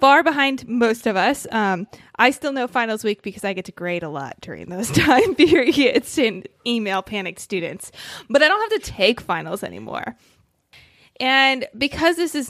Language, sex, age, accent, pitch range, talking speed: English, female, 20-39, American, 210-290 Hz, 180 wpm